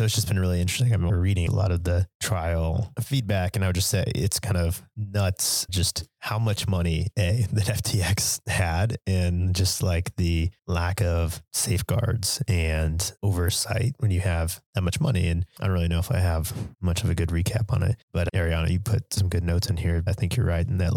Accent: American